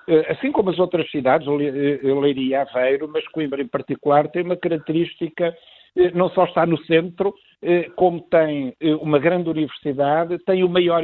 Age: 50-69